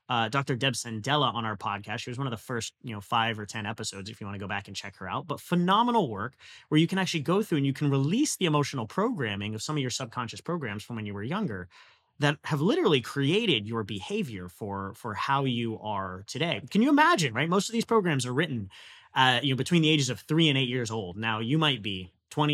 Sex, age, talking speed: male, 30-49, 255 wpm